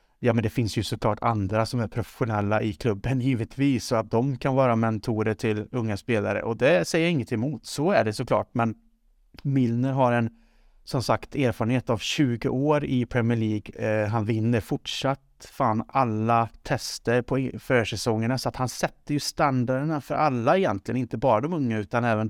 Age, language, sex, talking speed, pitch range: 30-49, Swedish, male, 185 wpm, 115-135 Hz